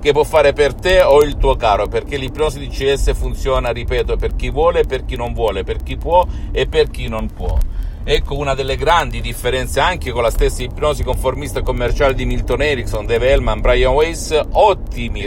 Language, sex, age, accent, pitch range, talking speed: Italian, male, 50-69, native, 100-150 Hz, 200 wpm